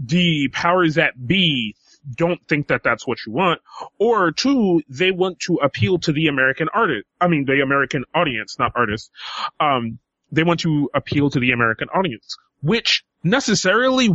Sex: male